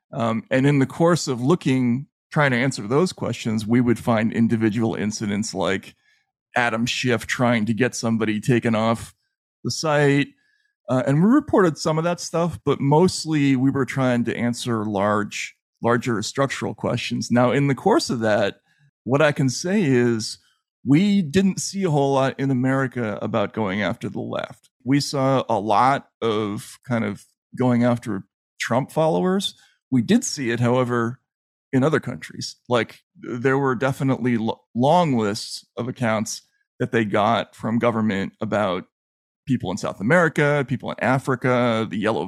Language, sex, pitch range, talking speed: English, male, 115-145 Hz, 160 wpm